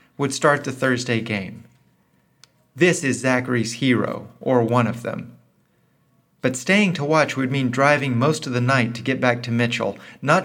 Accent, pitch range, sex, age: American, 120-155 Hz, male, 40-59